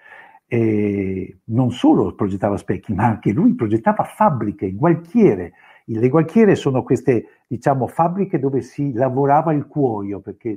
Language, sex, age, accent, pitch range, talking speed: Italian, male, 60-79, native, 110-165 Hz, 135 wpm